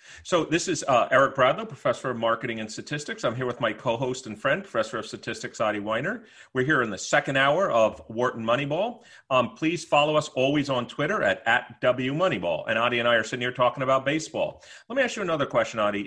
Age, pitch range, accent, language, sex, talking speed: 40-59, 120-155 Hz, American, English, male, 225 wpm